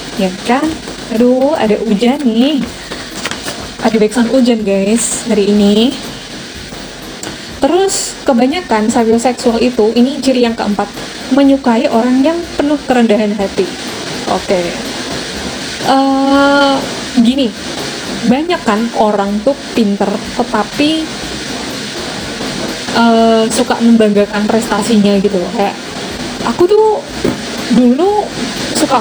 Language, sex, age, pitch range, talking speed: Indonesian, female, 20-39, 215-265 Hz, 95 wpm